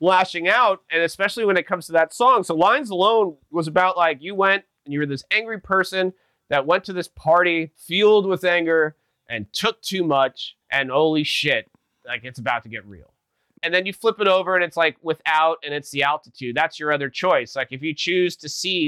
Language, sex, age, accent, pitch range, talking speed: English, male, 30-49, American, 140-175 Hz, 220 wpm